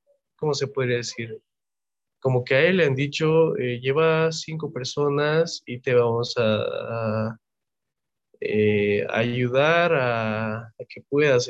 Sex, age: male, 20-39